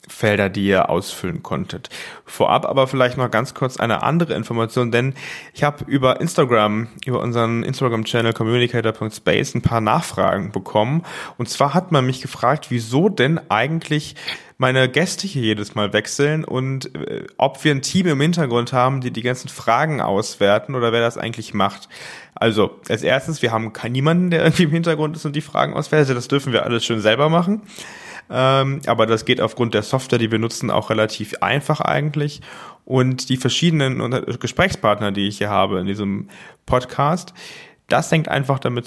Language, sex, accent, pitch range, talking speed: German, male, German, 110-145 Hz, 175 wpm